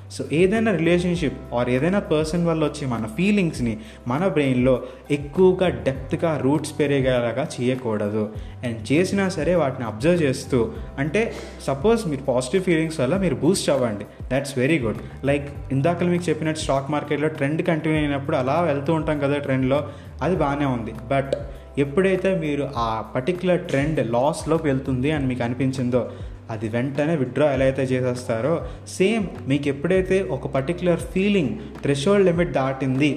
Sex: male